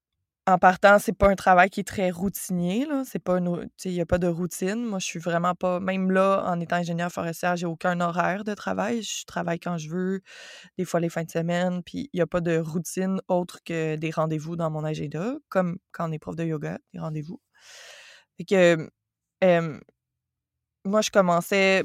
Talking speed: 205 wpm